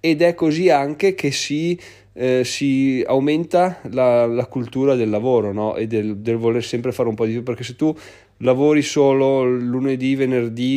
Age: 30-49